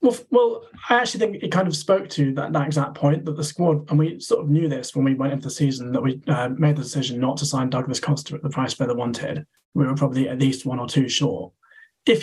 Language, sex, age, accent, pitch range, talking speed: English, male, 20-39, British, 135-155 Hz, 280 wpm